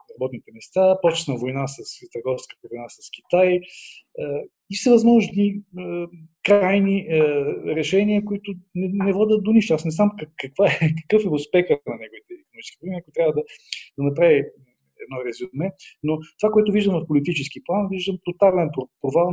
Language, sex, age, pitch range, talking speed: Bulgarian, male, 40-59, 150-190 Hz, 160 wpm